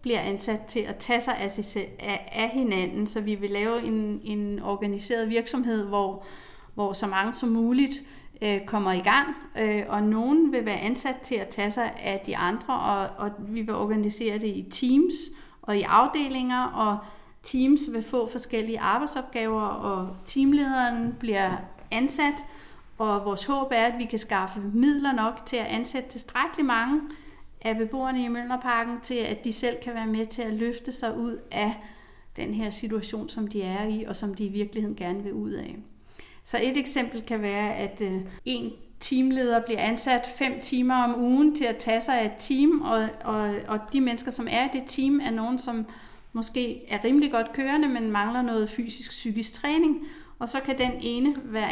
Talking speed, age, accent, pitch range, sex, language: 180 wpm, 40-59, native, 210-255 Hz, female, Danish